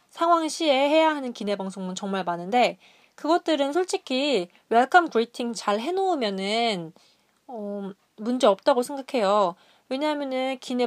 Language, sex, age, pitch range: Korean, female, 20-39, 205-280 Hz